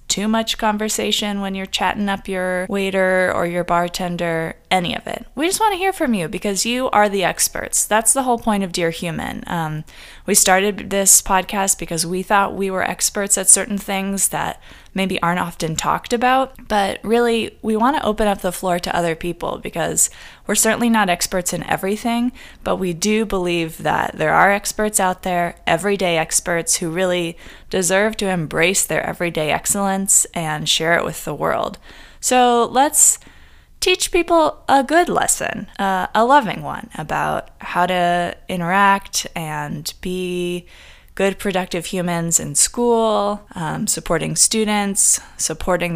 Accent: American